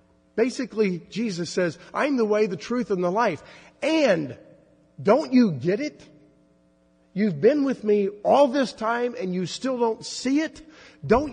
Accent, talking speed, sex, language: American, 160 wpm, male, English